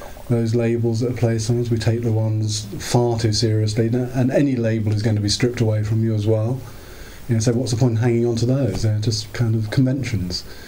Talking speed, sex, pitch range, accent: 240 wpm, male, 110-130 Hz, British